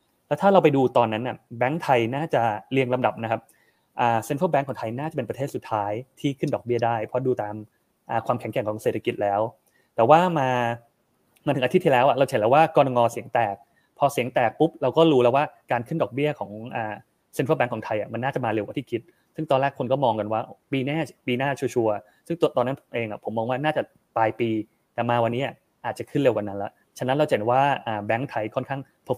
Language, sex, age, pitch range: Thai, male, 20-39, 110-140 Hz